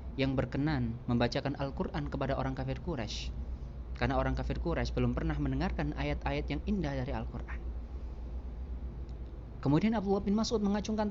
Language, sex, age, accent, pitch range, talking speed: Indonesian, male, 30-49, native, 110-160 Hz, 135 wpm